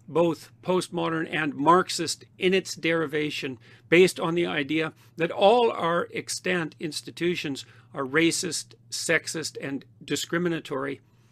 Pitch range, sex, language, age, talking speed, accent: 130-175 Hz, male, English, 50-69, 110 wpm, American